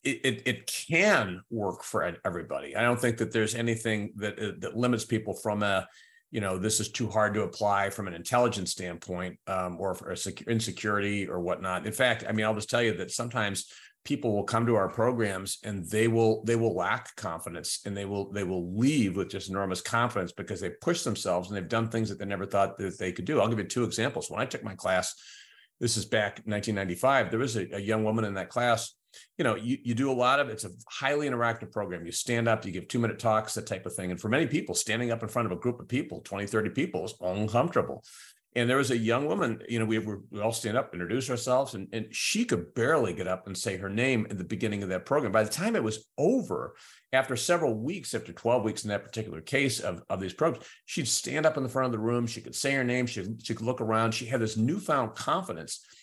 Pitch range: 100-120 Hz